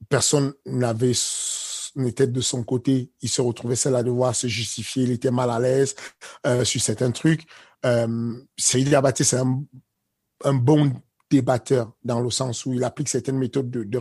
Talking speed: 175 wpm